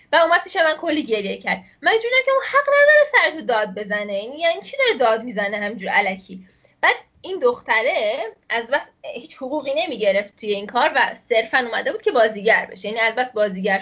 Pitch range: 225-355 Hz